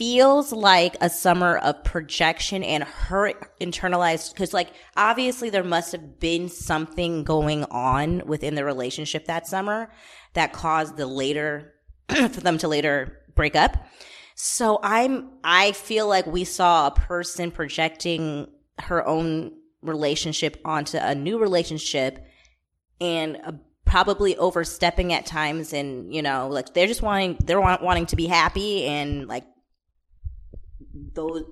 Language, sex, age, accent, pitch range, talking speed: English, female, 20-39, American, 155-195 Hz, 140 wpm